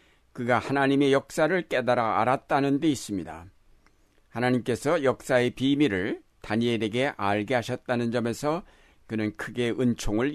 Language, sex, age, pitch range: Korean, male, 60-79, 115-140 Hz